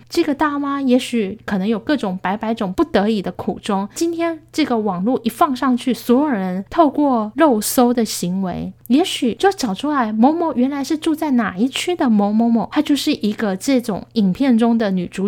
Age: 10-29